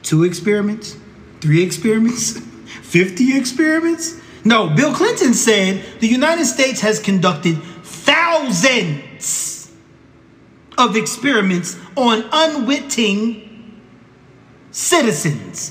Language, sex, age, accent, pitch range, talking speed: English, male, 30-49, American, 175-255 Hz, 80 wpm